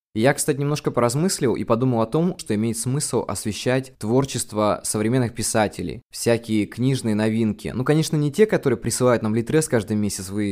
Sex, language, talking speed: male, Russian, 165 wpm